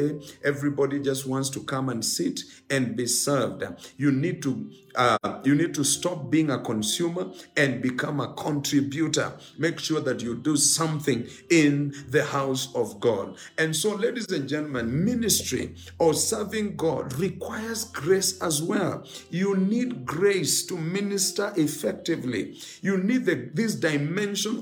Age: 50-69